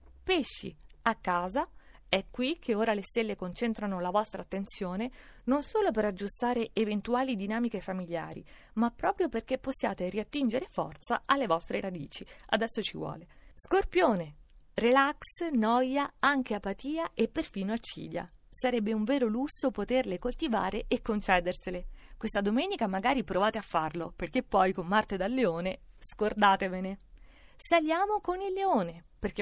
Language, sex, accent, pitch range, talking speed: Italian, female, native, 200-275 Hz, 135 wpm